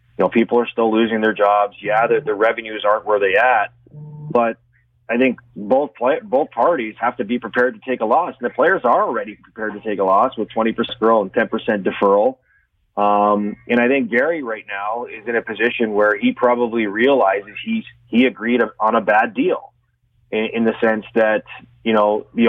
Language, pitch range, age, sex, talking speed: English, 110-120 Hz, 30-49, male, 205 wpm